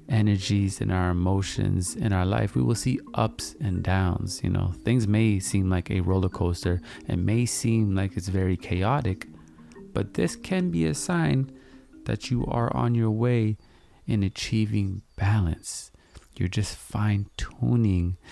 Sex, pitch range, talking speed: male, 90-110 Hz, 155 wpm